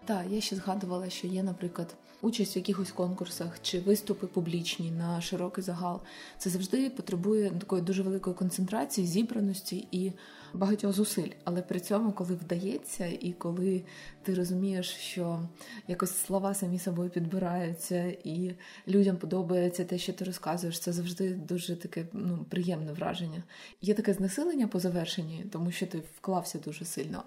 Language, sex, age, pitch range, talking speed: Ukrainian, female, 20-39, 180-200 Hz, 150 wpm